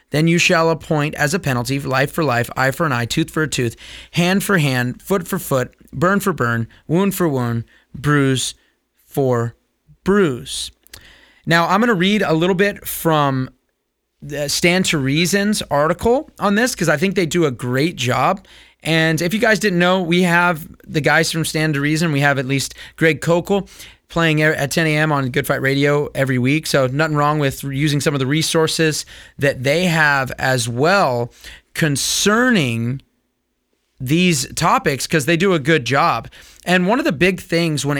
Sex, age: male, 30-49